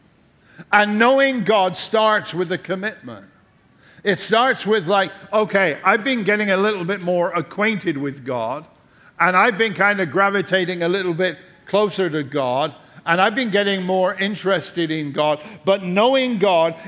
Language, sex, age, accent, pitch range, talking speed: English, male, 50-69, American, 160-200 Hz, 160 wpm